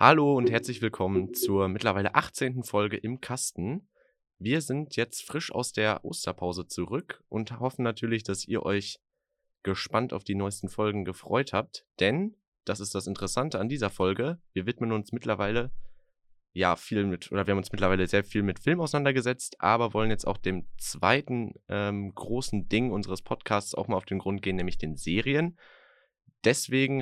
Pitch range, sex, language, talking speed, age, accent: 95-120 Hz, male, German, 170 wpm, 20-39, German